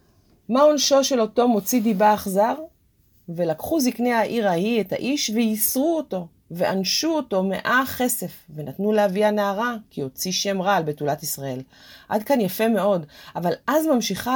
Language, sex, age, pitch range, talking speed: Hebrew, female, 30-49, 165-240 Hz, 150 wpm